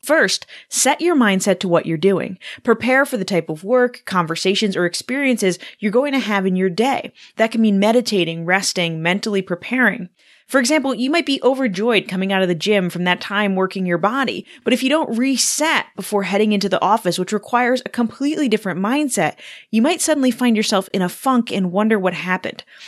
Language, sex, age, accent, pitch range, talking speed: English, female, 20-39, American, 180-245 Hz, 200 wpm